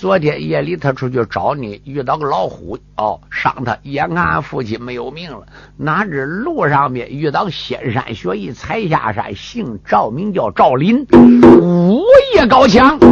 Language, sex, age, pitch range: Chinese, male, 50-69, 135-215 Hz